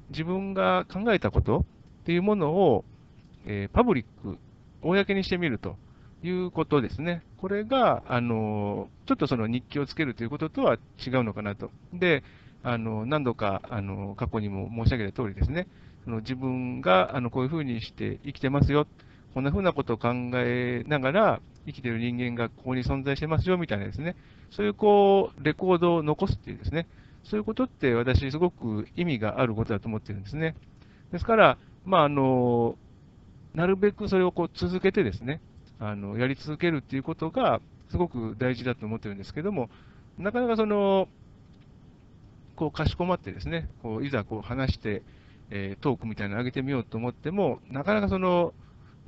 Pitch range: 110-165 Hz